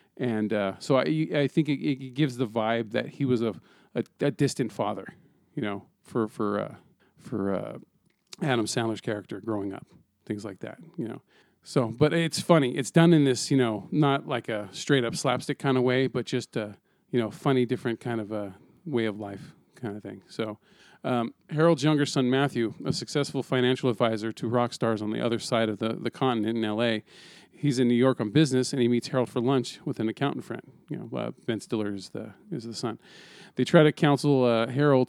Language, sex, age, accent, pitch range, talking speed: English, male, 40-59, American, 115-140 Hz, 215 wpm